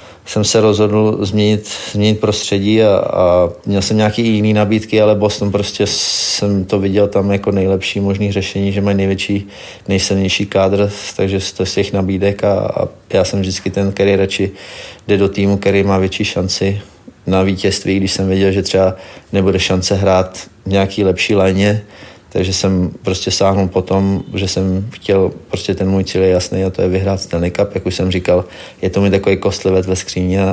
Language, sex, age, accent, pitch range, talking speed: Czech, male, 30-49, native, 95-100 Hz, 185 wpm